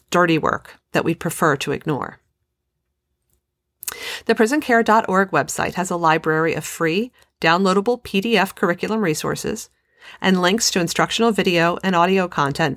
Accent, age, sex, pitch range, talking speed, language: American, 40-59, female, 165-215 Hz, 125 wpm, English